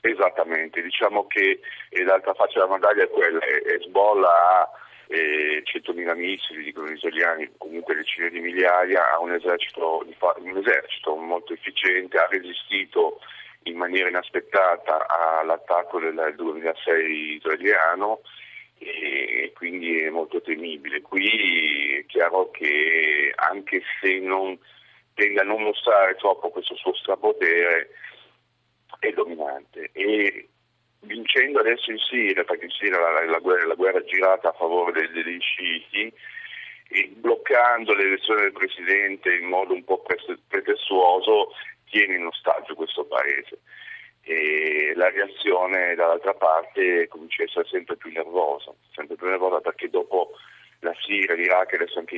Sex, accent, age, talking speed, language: male, native, 40-59, 135 wpm, Italian